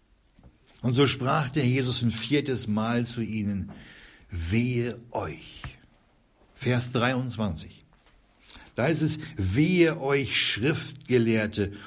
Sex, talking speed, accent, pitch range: male, 100 wpm, German, 100-135 Hz